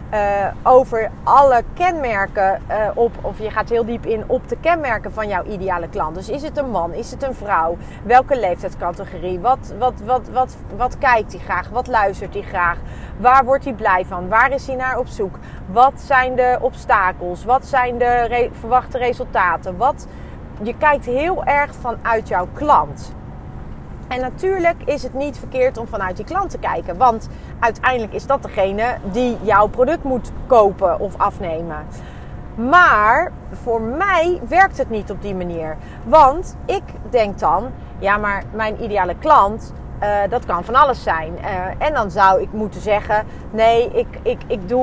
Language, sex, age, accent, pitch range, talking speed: Dutch, female, 30-49, Dutch, 220-270 Hz, 165 wpm